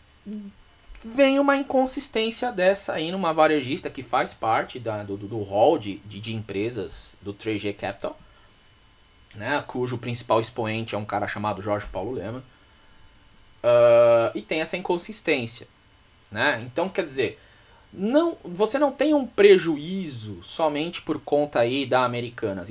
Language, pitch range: Portuguese, 110-180 Hz